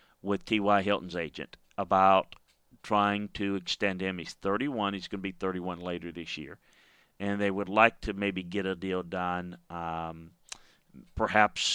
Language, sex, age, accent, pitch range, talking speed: English, male, 40-59, American, 90-105 Hz, 160 wpm